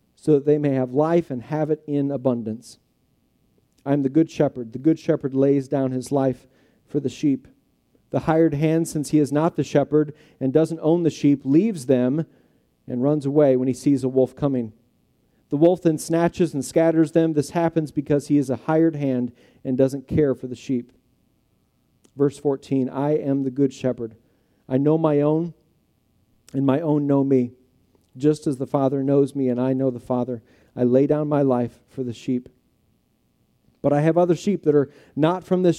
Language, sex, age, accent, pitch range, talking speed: English, male, 40-59, American, 130-155 Hz, 195 wpm